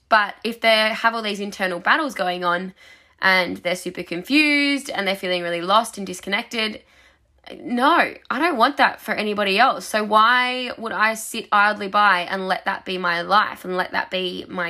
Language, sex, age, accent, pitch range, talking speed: English, female, 10-29, Australian, 185-250 Hz, 190 wpm